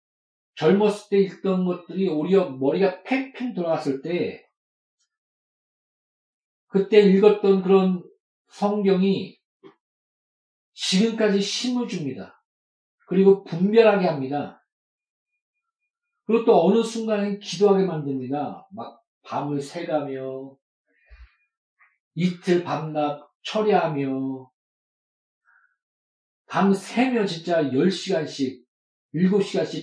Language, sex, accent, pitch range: Korean, male, native, 145-205 Hz